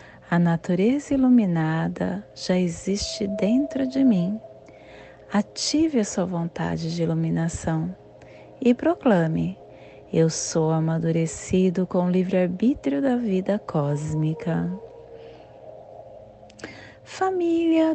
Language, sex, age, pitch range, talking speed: Portuguese, female, 30-49, 165-220 Hz, 85 wpm